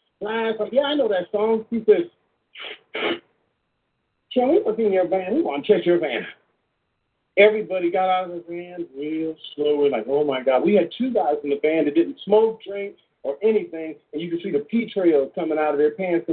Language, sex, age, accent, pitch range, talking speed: English, male, 50-69, American, 170-265 Hz, 215 wpm